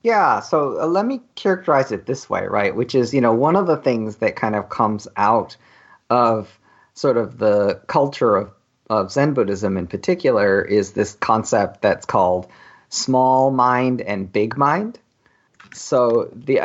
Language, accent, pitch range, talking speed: English, American, 105-140 Hz, 160 wpm